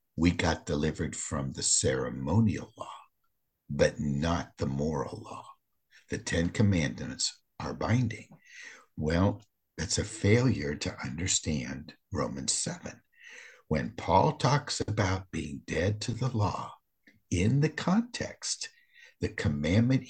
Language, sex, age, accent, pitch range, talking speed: English, male, 60-79, American, 80-115 Hz, 115 wpm